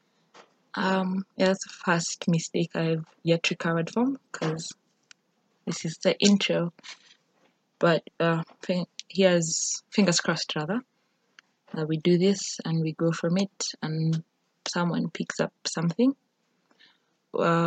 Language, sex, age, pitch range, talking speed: English, female, 20-39, 170-195 Hz, 130 wpm